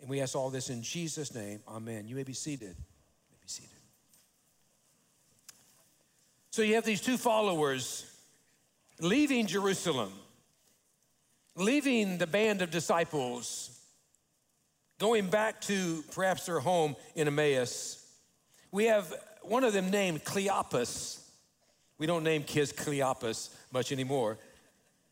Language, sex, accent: English, male, American